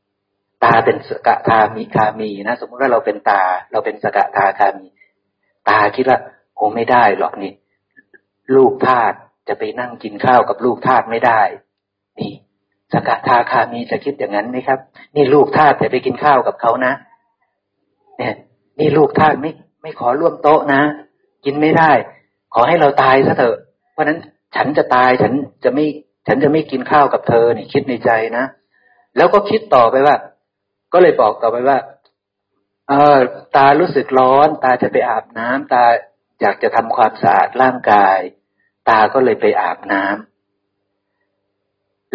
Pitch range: 105-160 Hz